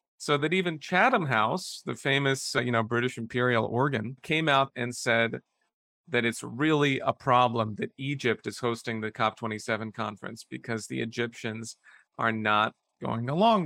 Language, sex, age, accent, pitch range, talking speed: English, male, 40-59, American, 115-155 Hz, 155 wpm